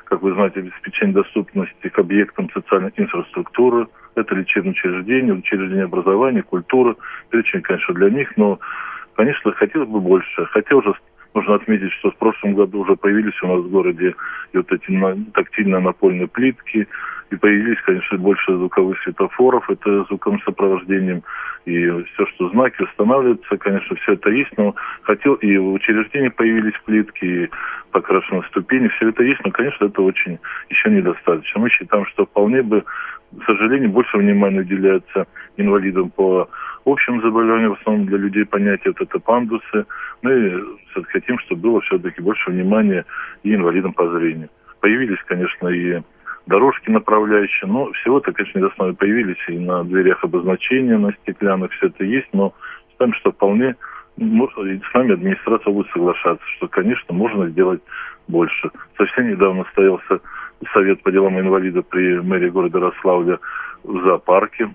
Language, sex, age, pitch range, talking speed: Russian, male, 20-39, 95-110 Hz, 145 wpm